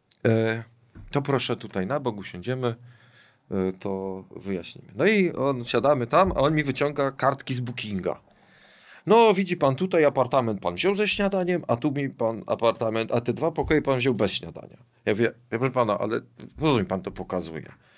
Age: 40-59